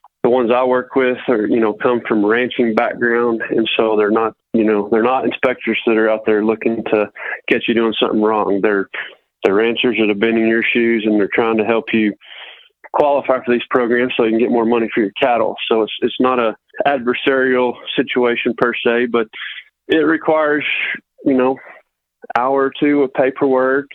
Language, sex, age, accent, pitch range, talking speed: English, male, 20-39, American, 110-125 Hz, 200 wpm